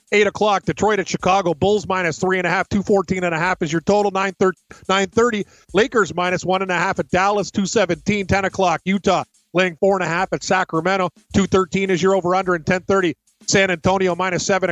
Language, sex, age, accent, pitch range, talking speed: English, male, 40-59, American, 175-195 Hz, 185 wpm